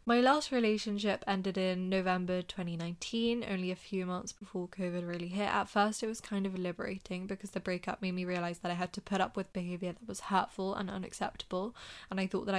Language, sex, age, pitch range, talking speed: English, female, 10-29, 180-195 Hz, 215 wpm